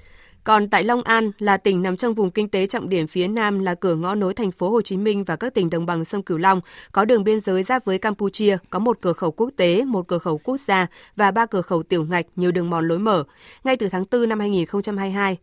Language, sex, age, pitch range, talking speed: Vietnamese, female, 20-39, 175-215 Hz, 260 wpm